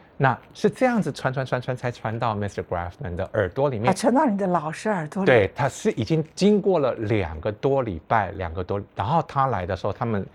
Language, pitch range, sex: Chinese, 100-140 Hz, male